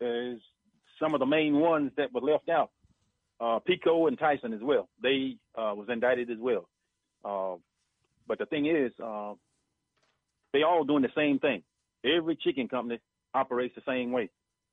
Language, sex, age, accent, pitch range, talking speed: English, male, 40-59, American, 105-145 Hz, 165 wpm